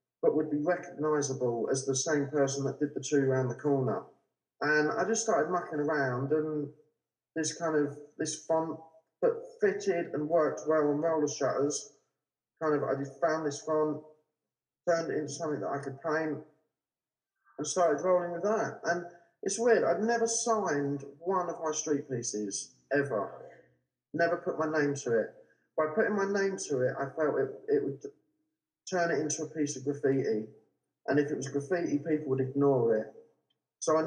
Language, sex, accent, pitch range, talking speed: English, male, British, 140-175 Hz, 180 wpm